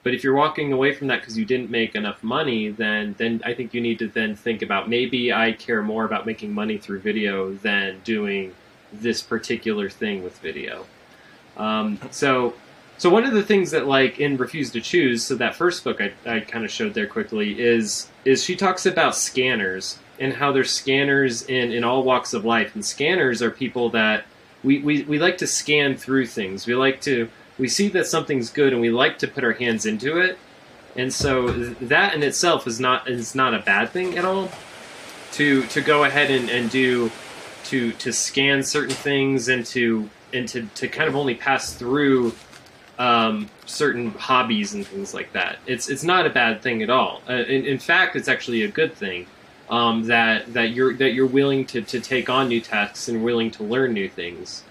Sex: male